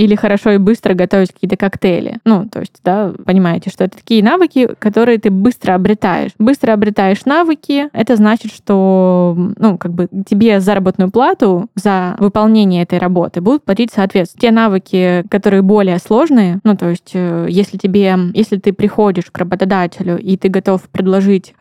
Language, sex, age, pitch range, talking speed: Russian, female, 20-39, 185-220 Hz, 160 wpm